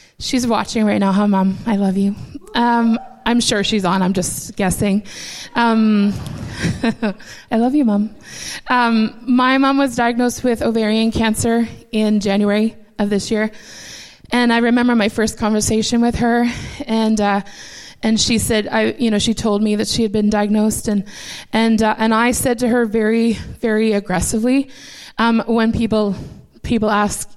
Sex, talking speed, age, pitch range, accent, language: female, 165 wpm, 20-39, 210-230 Hz, American, English